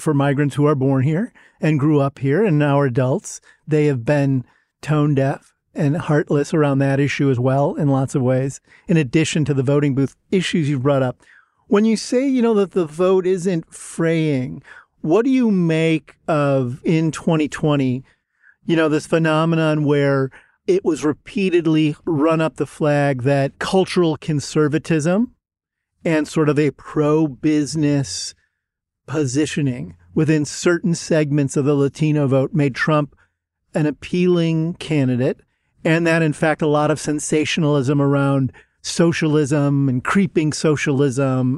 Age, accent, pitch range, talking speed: 40-59, American, 140-160 Hz, 150 wpm